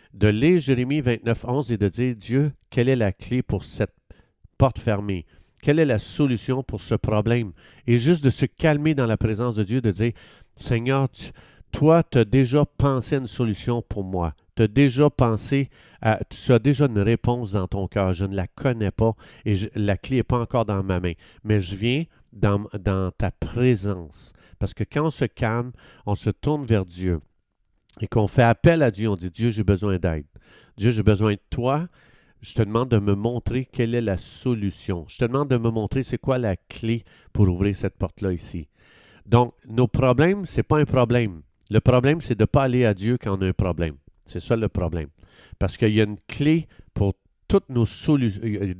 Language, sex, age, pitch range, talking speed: French, male, 50-69, 100-125 Hz, 220 wpm